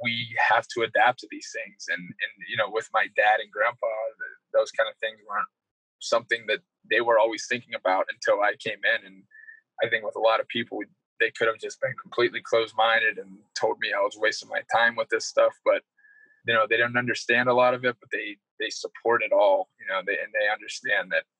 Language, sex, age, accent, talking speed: English, male, 20-39, American, 225 wpm